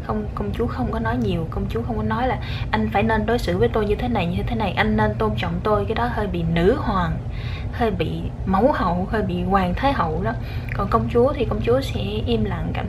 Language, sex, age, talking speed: Vietnamese, female, 10-29, 265 wpm